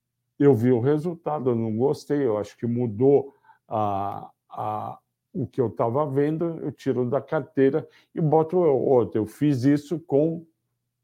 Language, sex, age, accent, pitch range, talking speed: Portuguese, male, 60-79, Brazilian, 125-155 Hz, 160 wpm